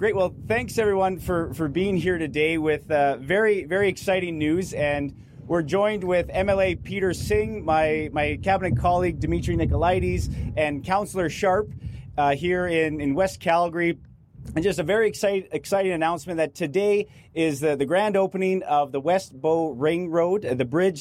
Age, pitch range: 30-49, 135-170 Hz